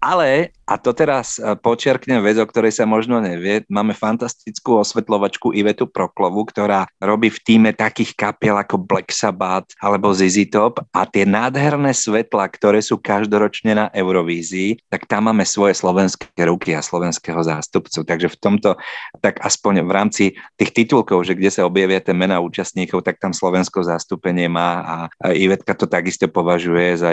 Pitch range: 90-105 Hz